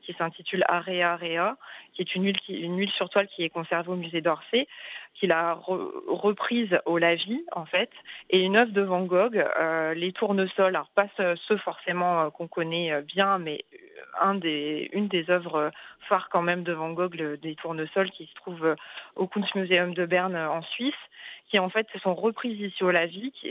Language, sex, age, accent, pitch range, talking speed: French, female, 30-49, French, 170-205 Hz, 200 wpm